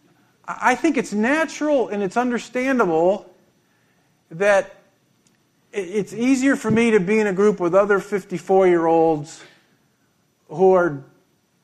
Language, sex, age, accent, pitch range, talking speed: English, male, 50-69, American, 165-225 Hz, 115 wpm